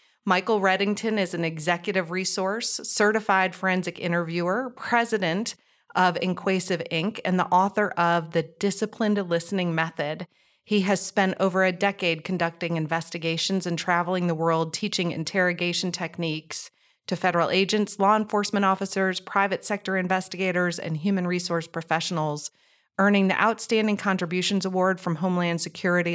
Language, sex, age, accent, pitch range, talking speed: English, female, 30-49, American, 170-200 Hz, 130 wpm